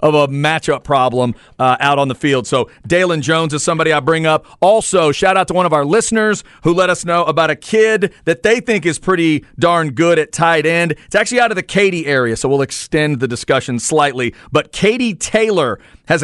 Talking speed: 220 wpm